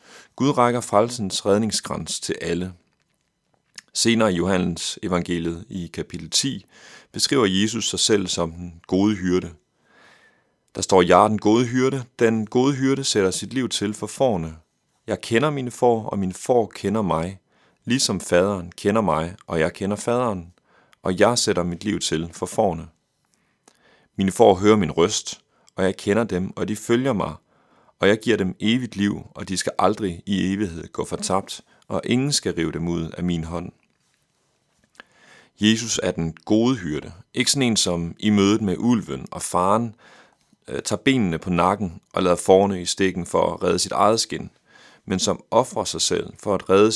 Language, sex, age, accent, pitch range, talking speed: Danish, male, 30-49, native, 90-110 Hz, 175 wpm